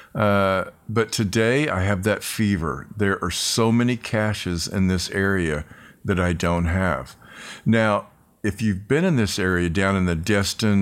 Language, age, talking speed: English, 50-69, 165 wpm